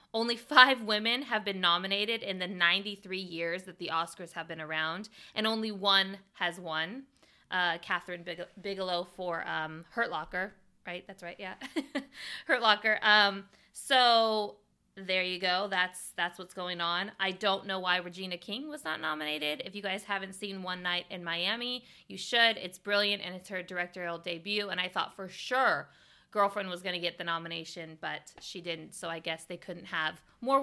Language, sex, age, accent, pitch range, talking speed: English, female, 20-39, American, 180-225 Hz, 185 wpm